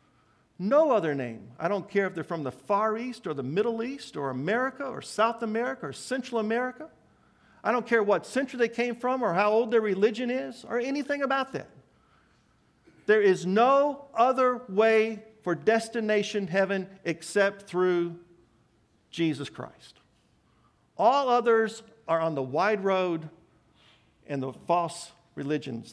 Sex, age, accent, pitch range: male, 50-69, American, 150-230 Hz